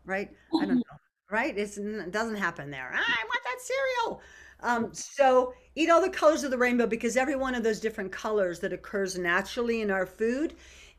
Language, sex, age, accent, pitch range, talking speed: English, female, 50-69, American, 175-220 Hz, 195 wpm